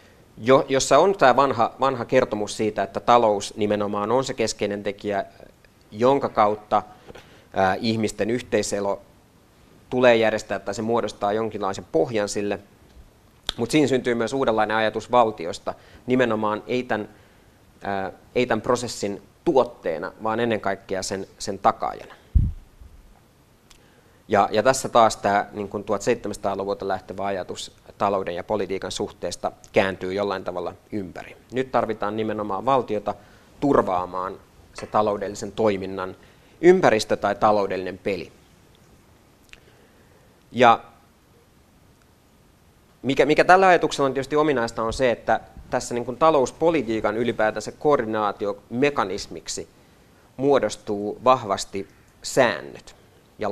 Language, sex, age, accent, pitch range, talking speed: Finnish, male, 30-49, native, 100-120 Hz, 105 wpm